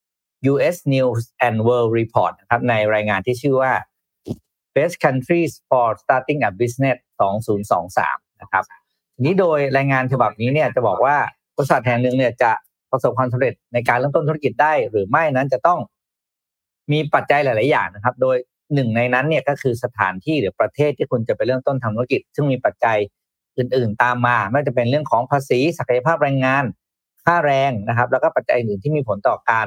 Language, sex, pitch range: Thai, male, 115-145 Hz